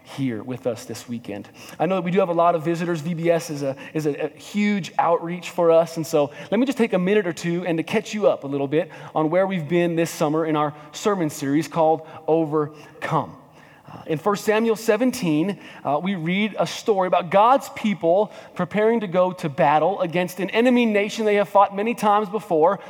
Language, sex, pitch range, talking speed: English, male, 165-215 Hz, 215 wpm